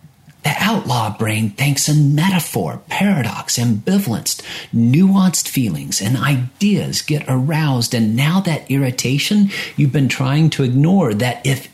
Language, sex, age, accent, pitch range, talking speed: English, male, 50-69, American, 105-155 Hz, 125 wpm